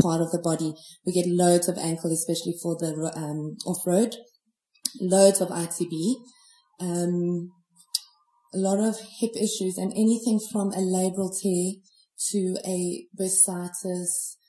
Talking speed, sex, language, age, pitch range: 135 wpm, female, English, 20-39, 175-215 Hz